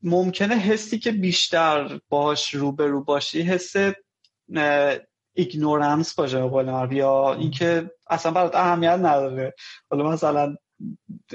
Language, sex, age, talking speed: Persian, male, 20-39, 100 wpm